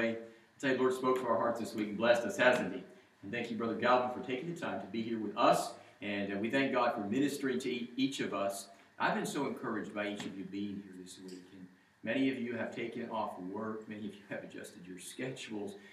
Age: 40-59